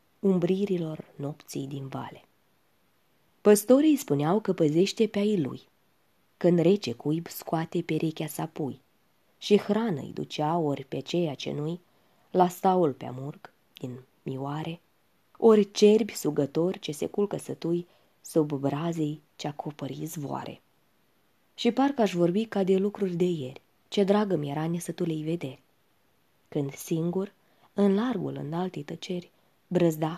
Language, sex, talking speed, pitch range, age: Romanian, female, 125 wpm, 155-200 Hz, 20-39